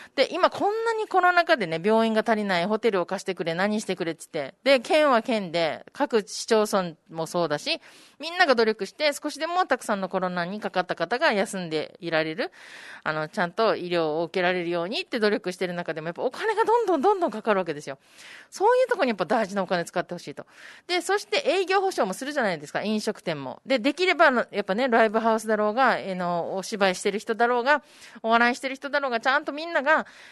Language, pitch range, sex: Japanese, 190-290 Hz, female